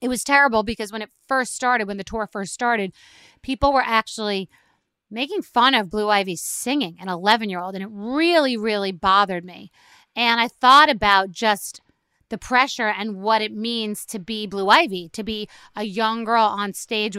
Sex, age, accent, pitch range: female, 30-49, American, 200-240 Hz